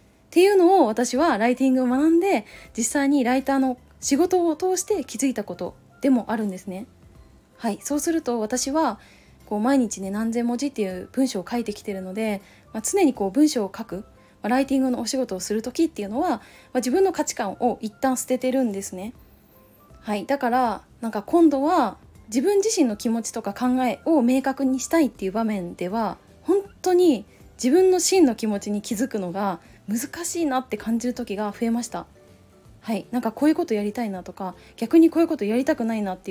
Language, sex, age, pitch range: Japanese, female, 20-39, 210-295 Hz